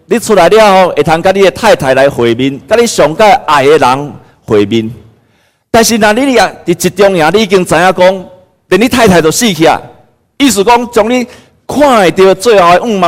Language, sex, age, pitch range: Chinese, male, 50-69, 110-170 Hz